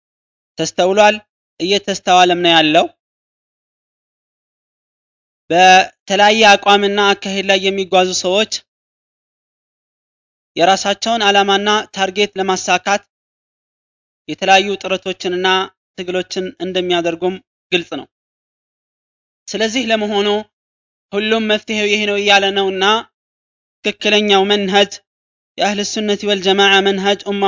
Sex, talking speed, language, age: male, 75 wpm, Amharic, 20-39